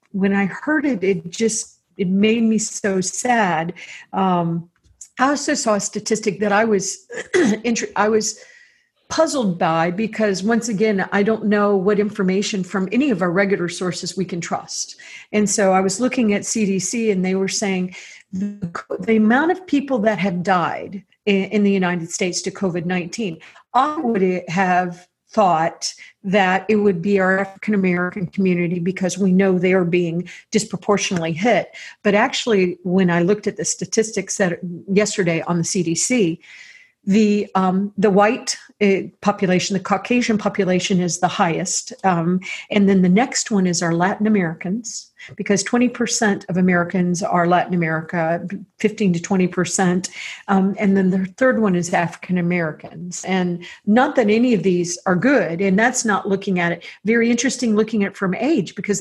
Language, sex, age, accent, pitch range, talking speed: English, female, 50-69, American, 185-220 Hz, 165 wpm